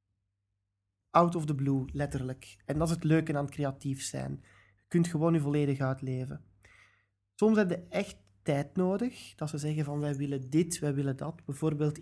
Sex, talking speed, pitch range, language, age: male, 185 wpm, 100-170 Hz, Dutch, 20-39